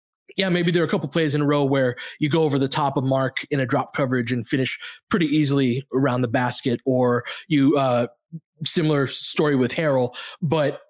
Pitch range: 130-165 Hz